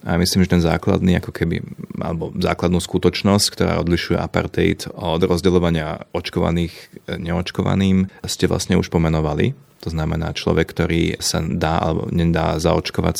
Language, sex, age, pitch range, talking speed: Slovak, male, 30-49, 85-95 Hz, 135 wpm